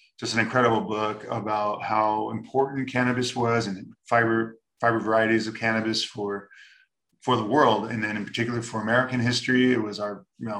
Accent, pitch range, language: American, 110-120 Hz, English